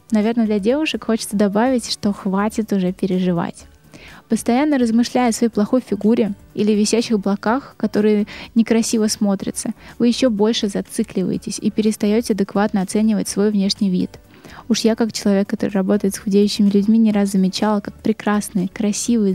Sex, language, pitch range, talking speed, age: female, Russian, 200-230 Hz, 145 wpm, 20-39